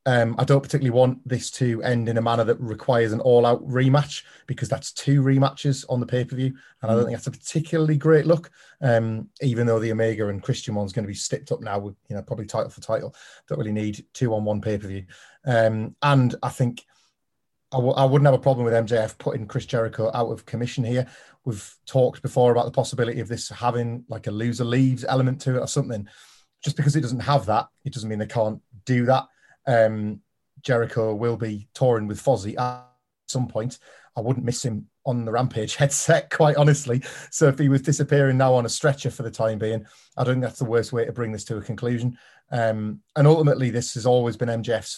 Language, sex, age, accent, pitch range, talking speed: English, male, 30-49, British, 115-135 Hz, 215 wpm